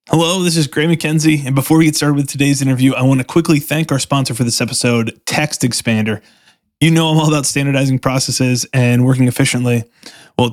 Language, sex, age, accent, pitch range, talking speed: English, male, 20-39, American, 130-160 Hz, 205 wpm